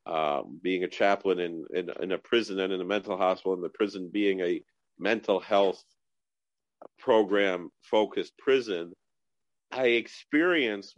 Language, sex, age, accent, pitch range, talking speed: English, male, 40-59, American, 100-120 Hz, 140 wpm